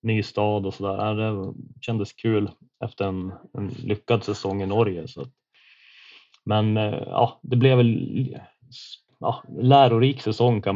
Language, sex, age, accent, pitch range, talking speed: Swedish, male, 20-39, native, 100-115 Hz, 140 wpm